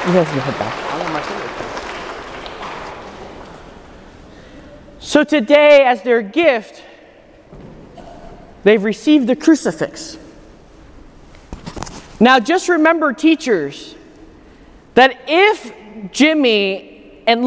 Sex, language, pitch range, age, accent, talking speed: male, English, 255-330 Hz, 30-49, American, 60 wpm